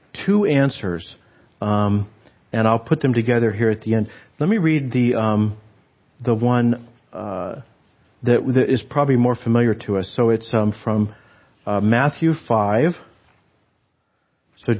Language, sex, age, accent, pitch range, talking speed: English, male, 50-69, American, 105-130 Hz, 145 wpm